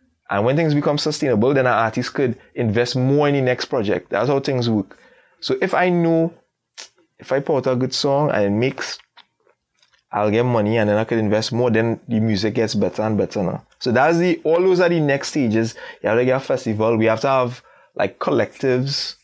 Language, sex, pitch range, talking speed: English, male, 115-155 Hz, 210 wpm